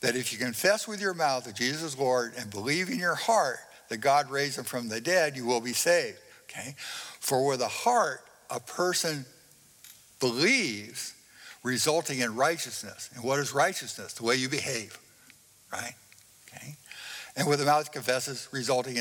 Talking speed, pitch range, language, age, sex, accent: 170 wpm, 125-160 Hz, English, 60-79, male, American